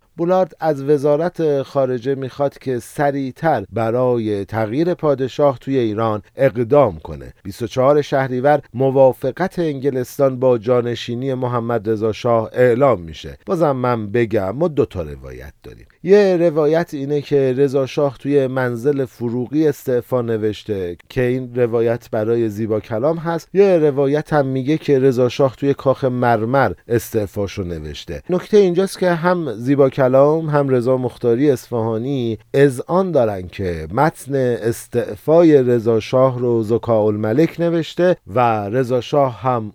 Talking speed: 130 wpm